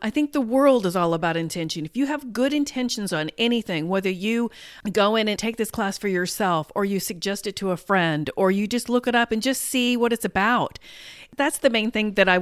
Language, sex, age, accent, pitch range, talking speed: English, female, 40-59, American, 180-245 Hz, 240 wpm